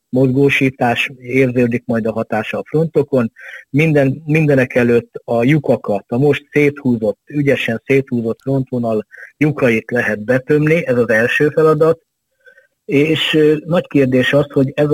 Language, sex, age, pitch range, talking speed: Hungarian, male, 50-69, 115-140 Hz, 120 wpm